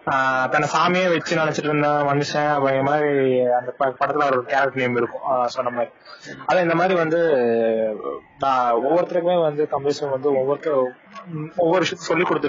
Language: Tamil